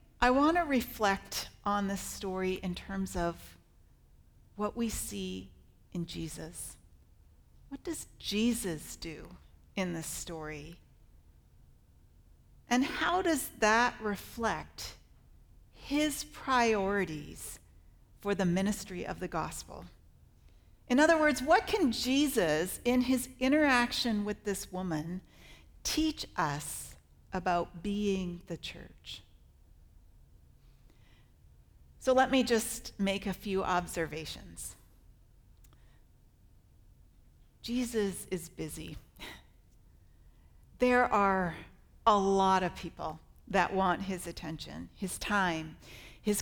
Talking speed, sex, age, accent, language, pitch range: 100 wpm, female, 40-59, American, English, 140-230 Hz